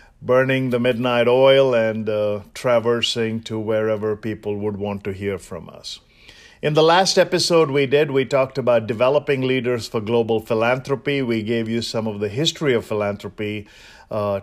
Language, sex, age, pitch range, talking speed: English, male, 50-69, 105-130 Hz, 165 wpm